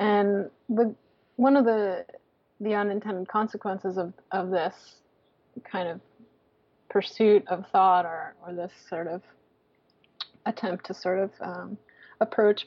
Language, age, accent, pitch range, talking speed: English, 30-49, American, 185-215 Hz, 130 wpm